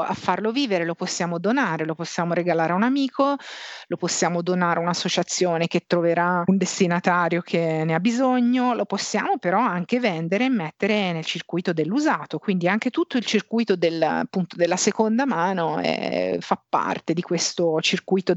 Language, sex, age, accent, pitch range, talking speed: Italian, female, 40-59, native, 170-225 Hz, 160 wpm